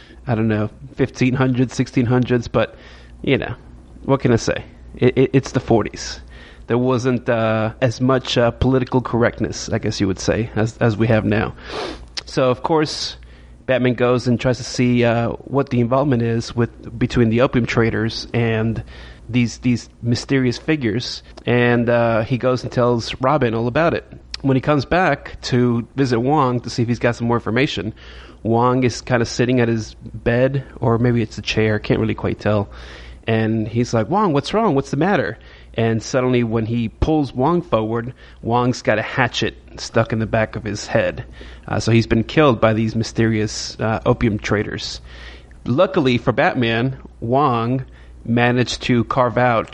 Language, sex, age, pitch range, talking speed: English, male, 30-49, 110-125 Hz, 175 wpm